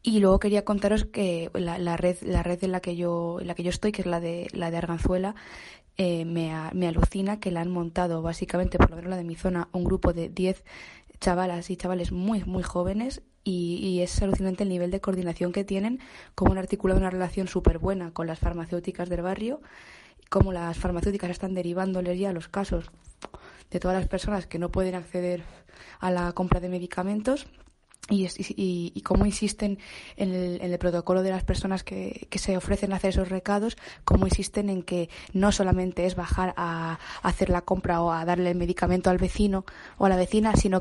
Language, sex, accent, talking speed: Spanish, female, Spanish, 210 wpm